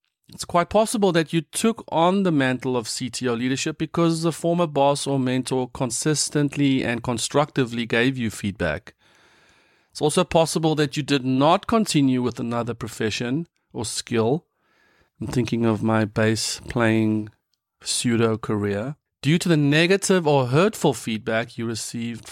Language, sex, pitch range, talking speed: English, male, 125-170 Hz, 145 wpm